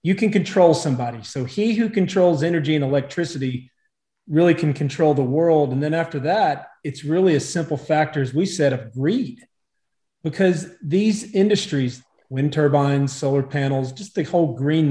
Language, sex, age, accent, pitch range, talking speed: English, male, 40-59, American, 140-170 Hz, 165 wpm